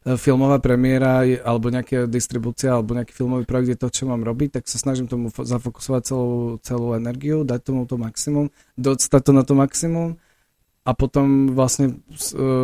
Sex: male